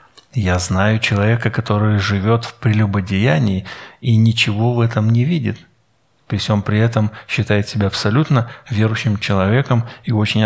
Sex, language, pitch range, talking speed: male, Russian, 105-140 Hz, 140 wpm